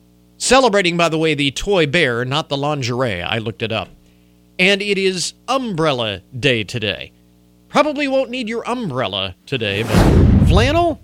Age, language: 40-59, English